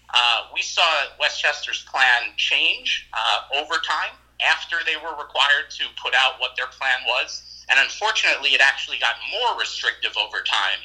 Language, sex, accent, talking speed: English, male, American, 160 wpm